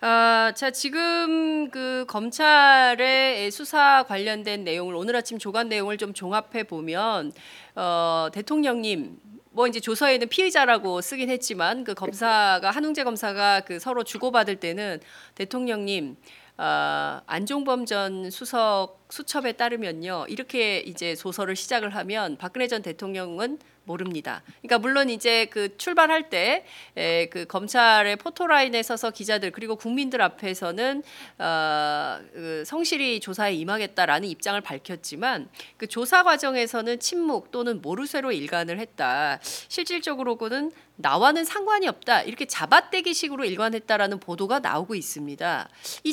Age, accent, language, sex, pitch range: 30-49, native, Korean, female, 195-270 Hz